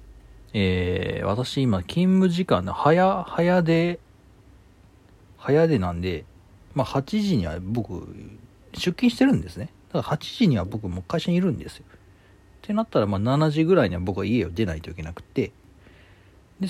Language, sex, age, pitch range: Japanese, male, 40-59, 95-145 Hz